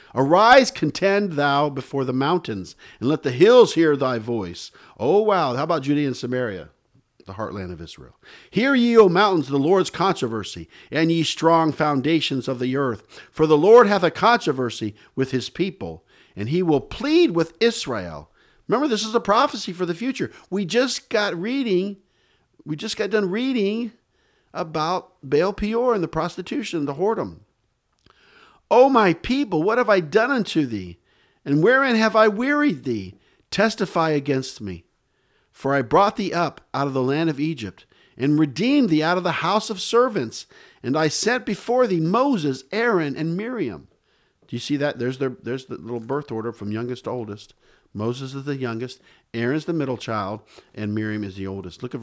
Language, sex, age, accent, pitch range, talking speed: English, male, 50-69, American, 125-210 Hz, 180 wpm